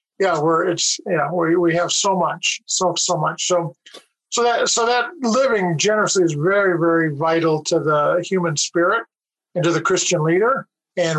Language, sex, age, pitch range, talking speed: English, male, 50-69, 160-185 Hz, 175 wpm